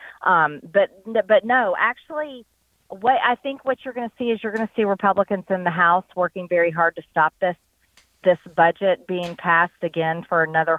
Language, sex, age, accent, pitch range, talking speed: English, female, 40-59, American, 170-215 Hz, 195 wpm